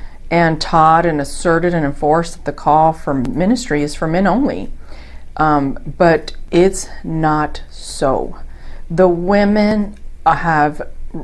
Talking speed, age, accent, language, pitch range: 125 wpm, 40-59, American, English, 145-180 Hz